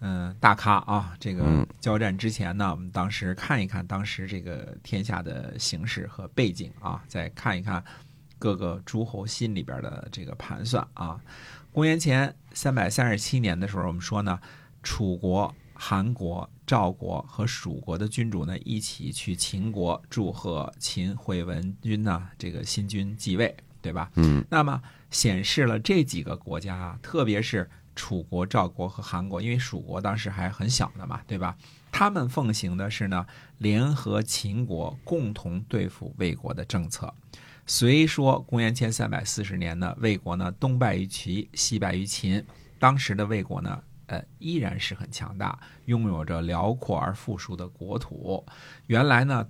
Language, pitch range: Chinese, 95-125 Hz